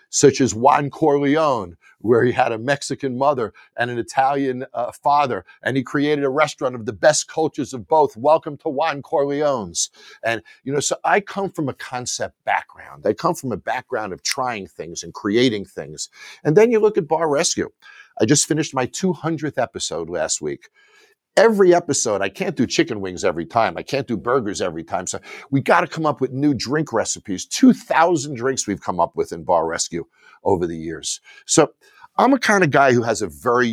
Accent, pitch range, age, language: American, 110-175 Hz, 50-69, English